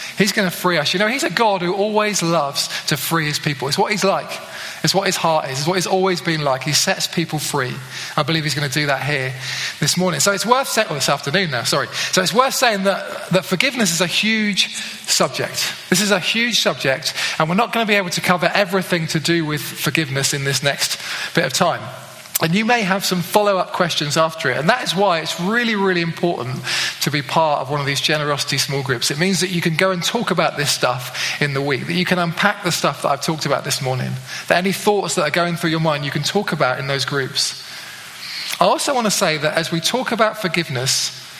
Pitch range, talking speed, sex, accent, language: 150-190 Hz, 245 wpm, male, British, English